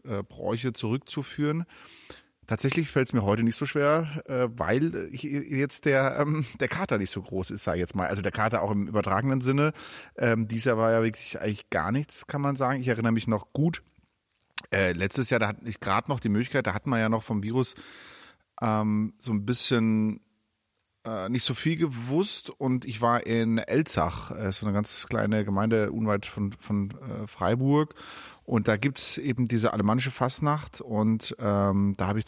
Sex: male